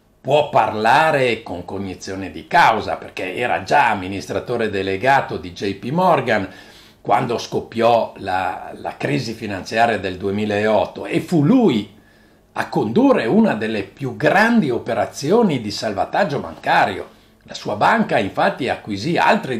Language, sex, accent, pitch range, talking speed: Italian, male, native, 100-140 Hz, 125 wpm